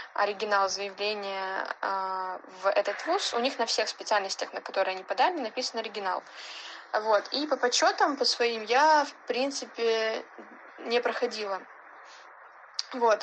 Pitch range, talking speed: 195-240 Hz, 130 wpm